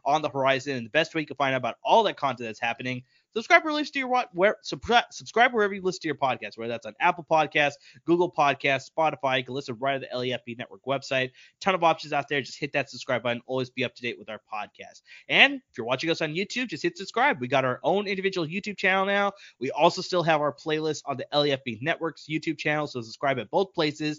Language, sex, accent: English, male, American